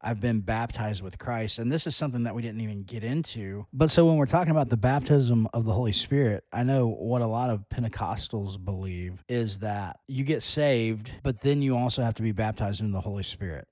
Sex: male